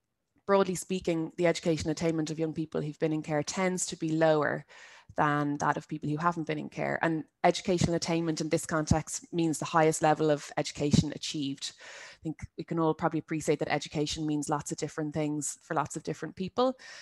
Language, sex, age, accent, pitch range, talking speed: English, female, 20-39, Irish, 155-175 Hz, 200 wpm